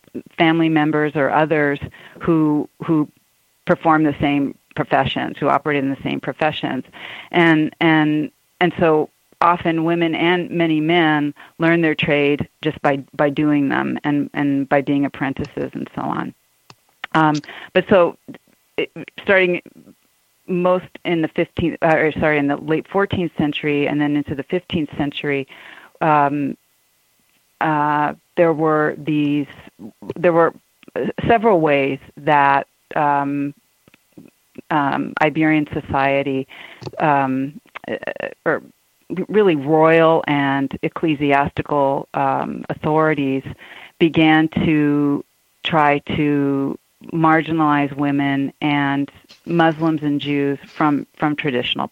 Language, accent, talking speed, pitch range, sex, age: English, American, 115 wpm, 145-160 Hz, female, 40-59